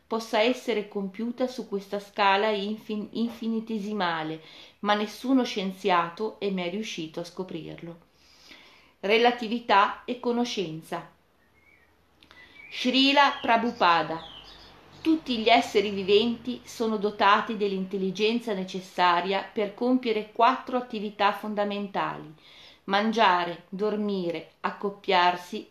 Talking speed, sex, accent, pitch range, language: 85 wpm, female, native, 185-225 Hz, Italian